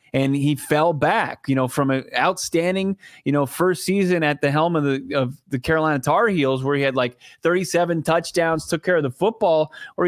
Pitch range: 140-180 Hz